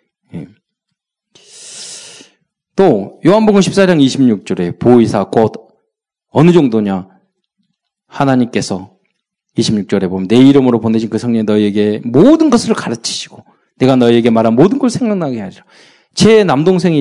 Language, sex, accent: Korean, male, native